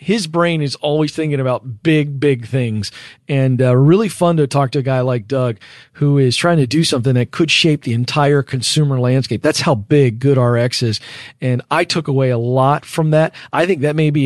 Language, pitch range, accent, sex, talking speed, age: English, 140-185 Hz, American, male, 220 wpm, 40-59